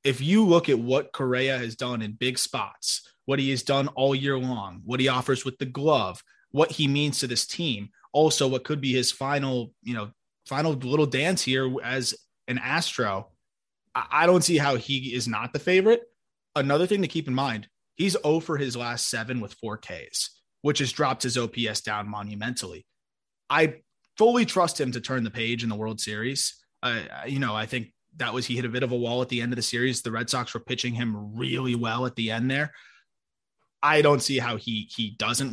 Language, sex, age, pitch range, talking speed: English, male, 20-39, 120-150 Hz, 215 wpm